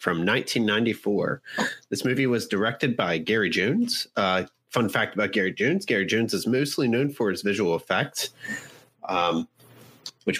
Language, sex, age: English, male, 30-49